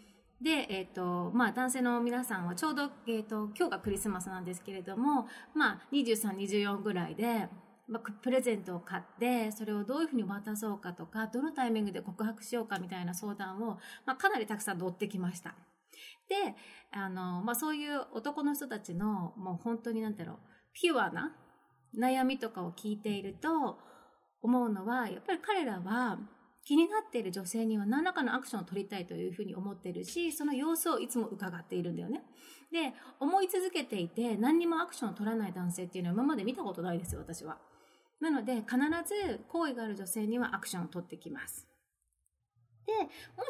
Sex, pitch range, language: female, 195-290 Hz, Japanese